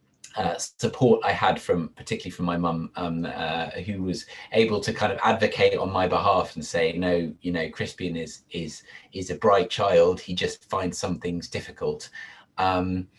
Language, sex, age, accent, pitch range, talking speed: English, male, 30-49, British, 90-120 Hz, 180 wpm